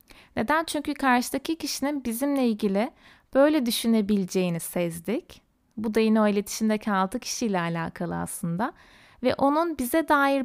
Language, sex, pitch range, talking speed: Turkish, female, 215-280 Hz, 125 wpm